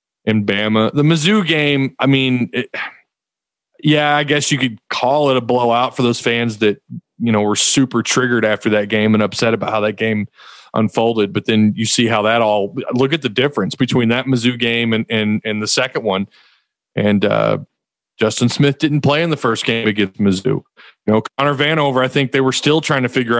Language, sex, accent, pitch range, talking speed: English, male, American, 105-130 Hz, 210 wpm